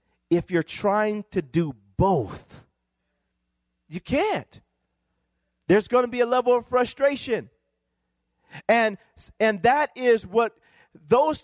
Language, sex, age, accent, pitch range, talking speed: English, male, 40-59, American, 175-265 Hz, 115 wpm